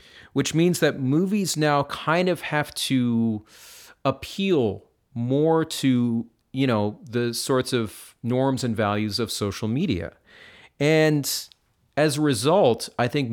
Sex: male